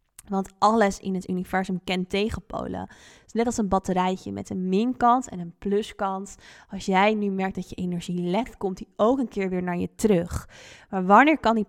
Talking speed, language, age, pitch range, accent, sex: 195 wpm, Dutch, 20-39, 190-225 Hz, Dutch, female